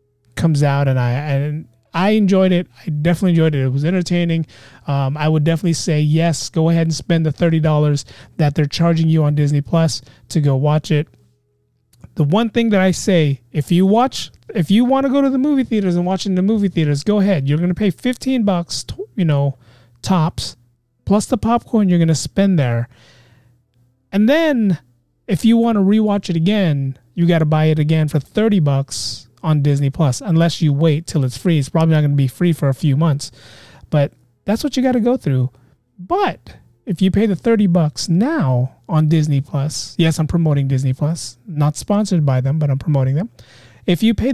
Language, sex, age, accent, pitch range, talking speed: English, male, 30-49, American, 135-195 Hz, 210 wpm